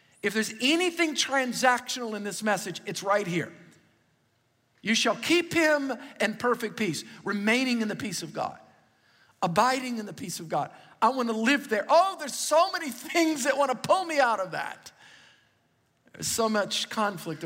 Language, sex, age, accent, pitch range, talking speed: English, male, 50-69, American, 175-245 Hz, 175 wpm